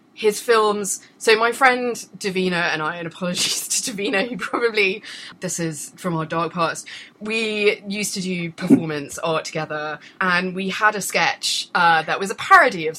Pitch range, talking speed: 165-235 Hz, 175 wpm